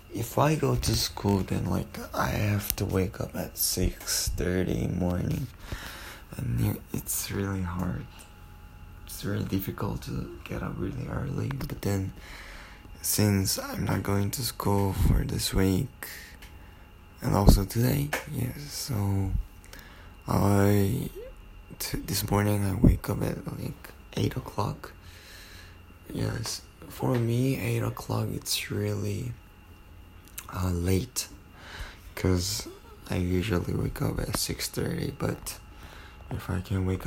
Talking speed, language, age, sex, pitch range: 125 wpm, English, 20-39, male, 90-110 Hz